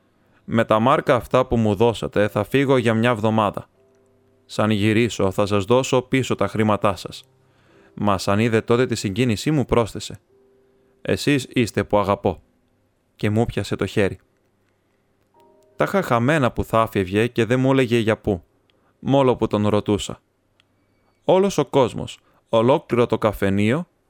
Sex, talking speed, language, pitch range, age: male, 145 wpm, Greek, 105-130 Hz, 20-39